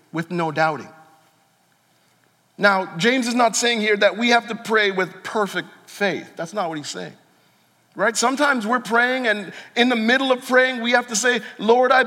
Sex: male